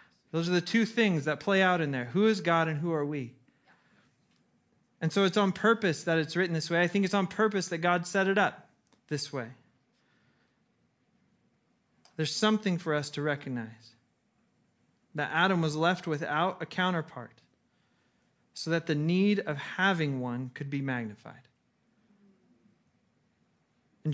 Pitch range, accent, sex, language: 145-180 Hz, American, male, English